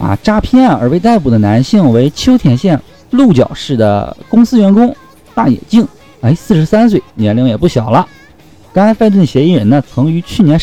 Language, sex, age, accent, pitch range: Chinese, male, 50-69, native, 110-185 Hz